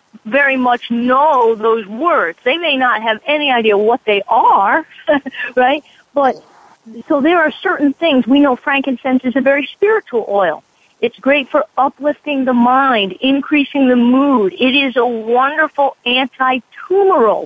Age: 40-59